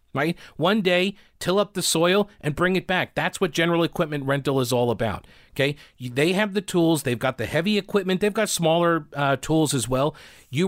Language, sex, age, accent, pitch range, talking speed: English, male, 40-59, American, 125-170 Hz, 210 wpm